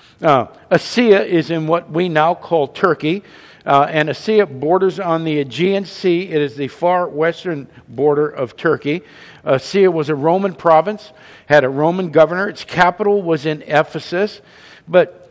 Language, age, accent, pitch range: English, 50-69, American, 155-205 Hz